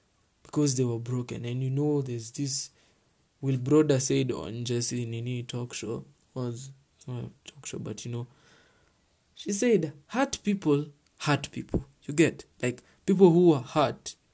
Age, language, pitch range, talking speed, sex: 20-39, English, 115-150 Hz, 155 wpm, male